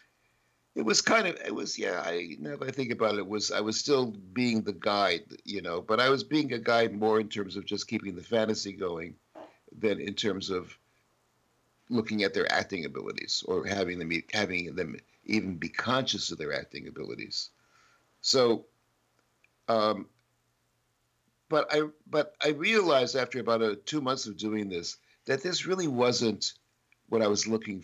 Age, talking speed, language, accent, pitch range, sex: 60-79, 180 wpm, English, American, 105-130 Hz, male